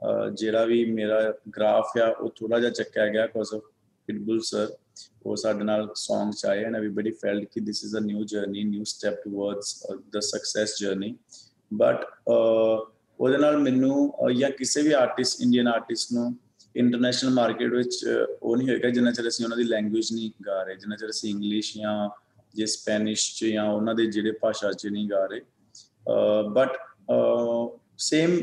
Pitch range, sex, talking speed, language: 105-120 Hz, male, 165 wpm, Punjabi